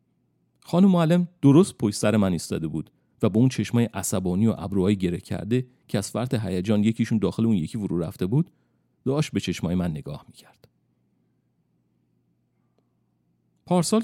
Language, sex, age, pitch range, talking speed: Persian, male, 40-59, 85-125 Hz, 150 wpm